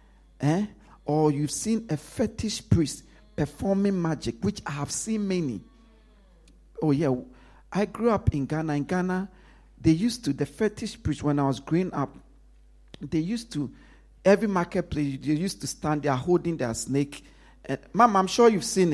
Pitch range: 140-200 Hz